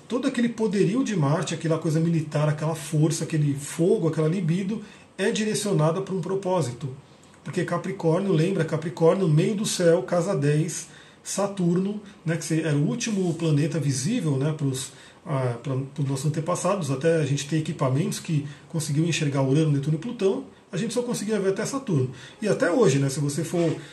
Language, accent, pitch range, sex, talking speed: Portuguese, Brazilian, 145-185 Hz, male, 170 wpm